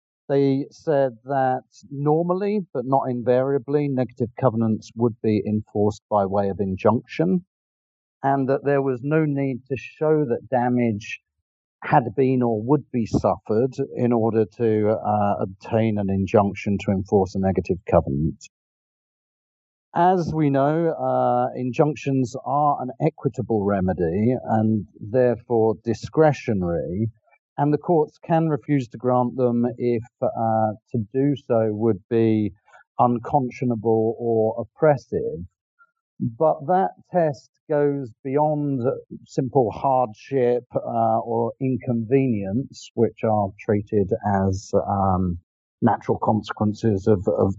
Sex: male